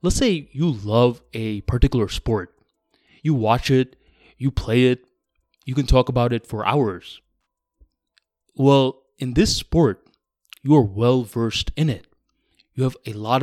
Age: 20-39